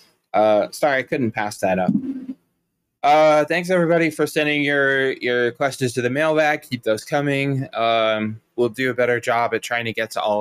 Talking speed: 190 wpm